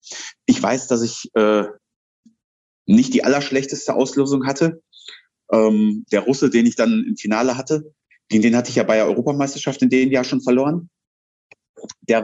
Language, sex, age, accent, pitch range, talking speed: German, male, 30-49, German, 115-150 Hz, 160 wpm